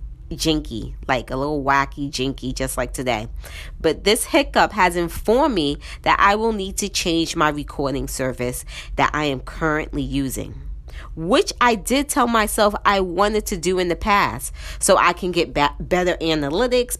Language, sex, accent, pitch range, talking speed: English, female, American, 140-200 Hz, 165 wpm